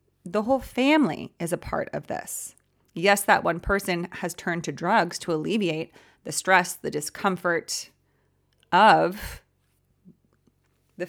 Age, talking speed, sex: 30-49, 130 wpm, female